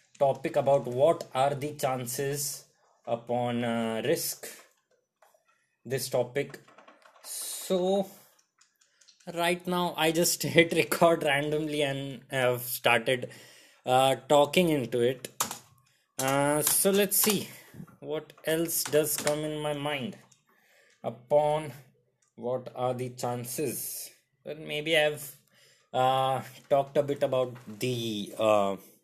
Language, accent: English, Indian